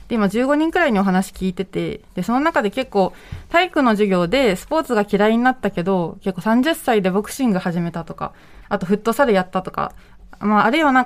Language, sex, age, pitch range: Japanese, female, 20-39, 190-260 Hz